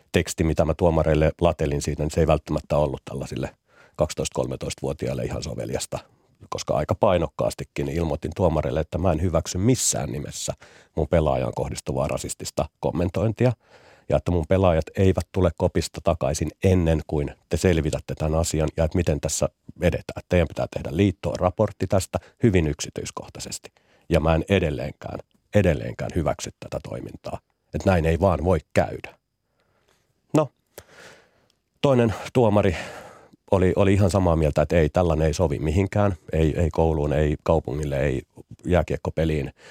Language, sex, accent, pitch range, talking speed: Finnish, male, native, 80-95 Hz, 140 wpm